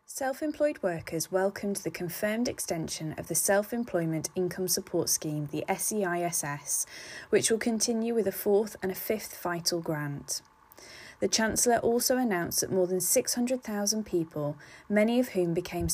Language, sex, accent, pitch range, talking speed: English, female, British, 160-205 Hz, 145 wpm